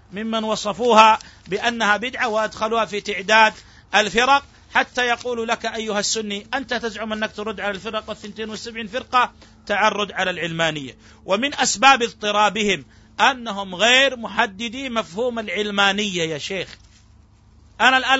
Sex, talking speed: male, 120 wpm